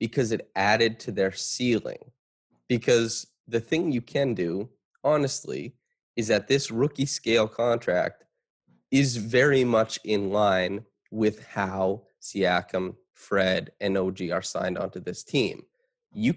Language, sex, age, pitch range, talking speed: English, male, 20-39, 95-120 Hz, 130 wpm